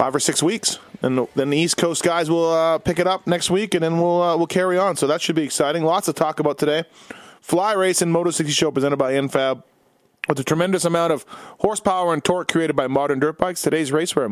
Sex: male